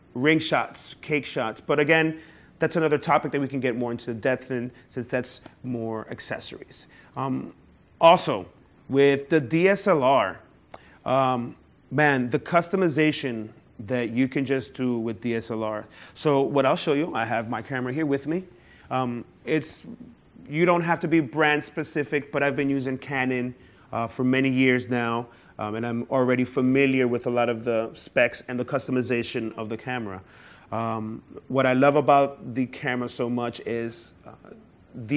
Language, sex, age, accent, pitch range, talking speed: English, male, 30-49, American, 120-145 Hz, 165 wpm